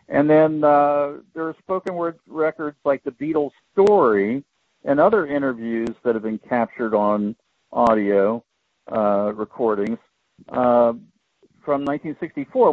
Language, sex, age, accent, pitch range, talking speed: English, male, 50-69, American, 115-150 Hz, 125 wpm